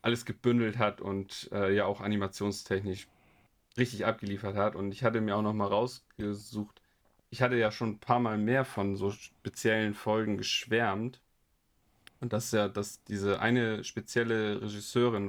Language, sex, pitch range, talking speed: German, male, 100-120 Hz, 155 wpm